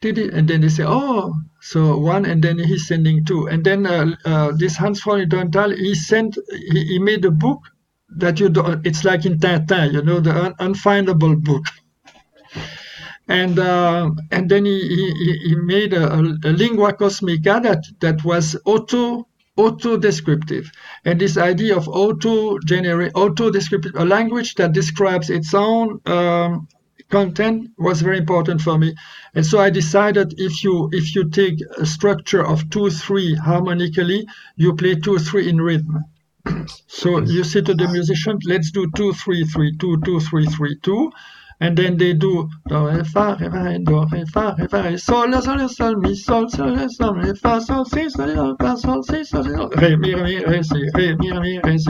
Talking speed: 140 wpm